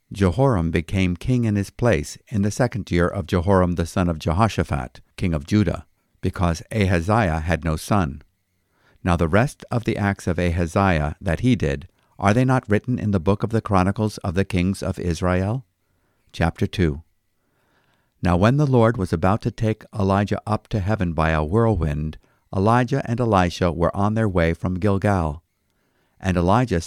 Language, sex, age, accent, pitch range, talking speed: English, male, 50-69, American, 85-110 Hz, 175 wpm